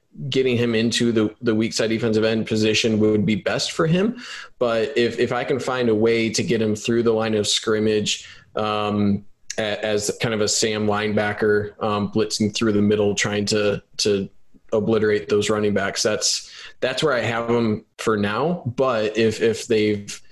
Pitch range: 105-115 Hz